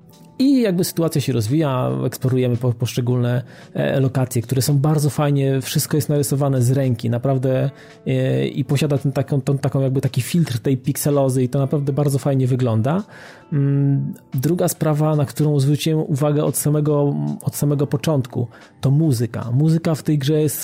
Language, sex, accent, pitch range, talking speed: Polish, male, native, 130-155 Hz, 155 wpm